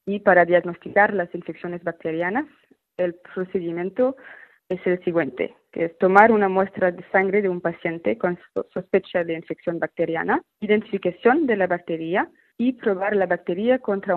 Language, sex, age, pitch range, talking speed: Spanish, female, 20-39, 175-210 Hz, 150 wpm